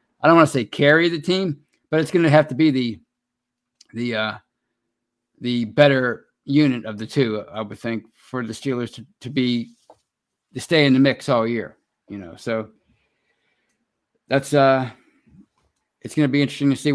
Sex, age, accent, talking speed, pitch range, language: male, 50-69, American, 185 wpm, 120-150 Hz, English